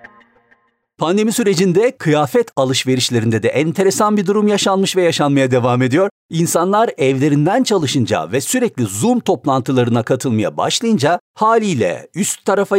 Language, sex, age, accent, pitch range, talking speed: Turkish, male, 50-69, native, 135-195 Hz, 115 wpm